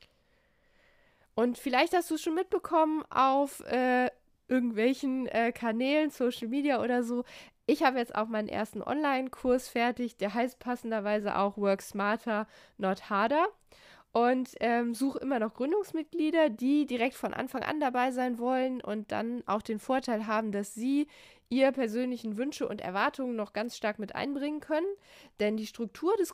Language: German